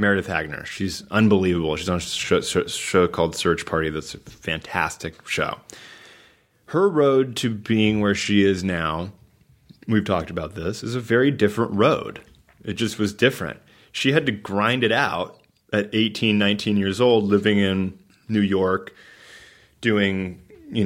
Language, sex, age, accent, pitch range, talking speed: English, male, 30-49, American, 95-115 Hz, 160 wpm